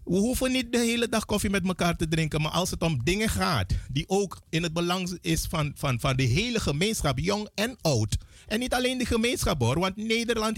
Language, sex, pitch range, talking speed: Dutch, male, 145-205 Hz, 225 wpm